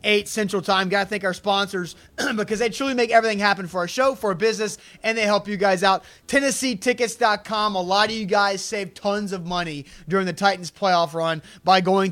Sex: male